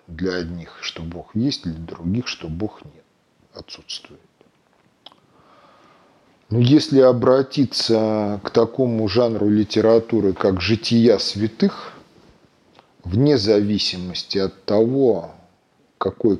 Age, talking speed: 40-59, 95 wpm